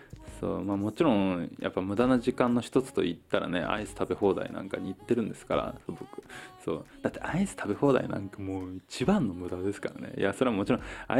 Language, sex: Japanese, male